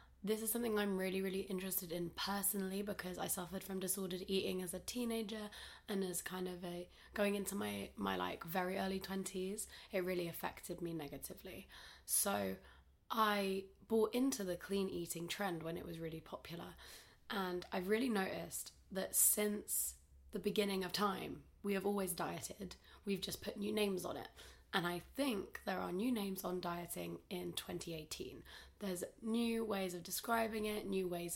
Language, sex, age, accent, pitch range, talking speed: English, female, 20-39, British, 180-210 Hz, 170 wpm